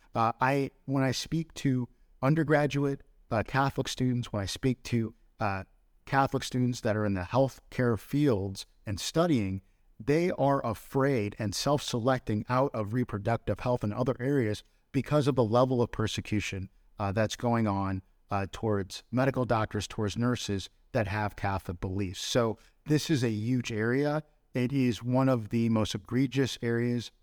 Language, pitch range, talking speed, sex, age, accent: English, 105-135 Hz, 155 wpm, male, 50-69, American